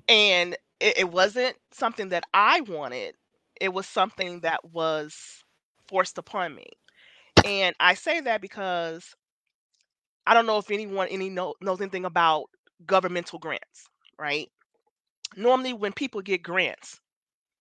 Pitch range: 185-260 Hz